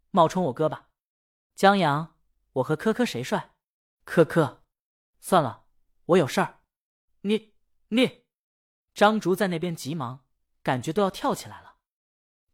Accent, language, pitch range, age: native, Chinese, 135-200 Hz, 20-39